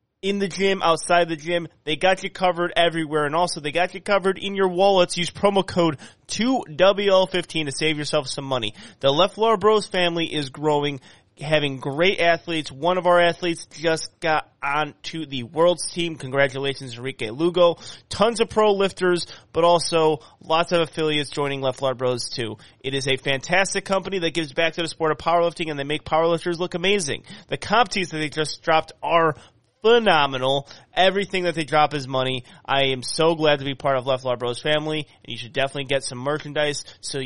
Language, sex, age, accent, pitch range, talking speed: English, male, 30-49, American, 135-175 Hz, 190 wpm